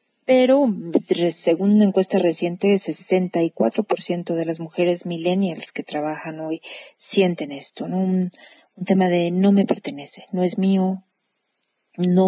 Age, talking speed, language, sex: 40-59, 125 wpm, Spanish, female